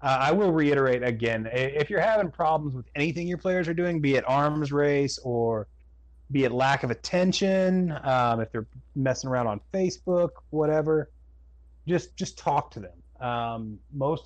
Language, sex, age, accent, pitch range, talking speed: English, male, 30-49, American, 110-150 Hz, 170 wpm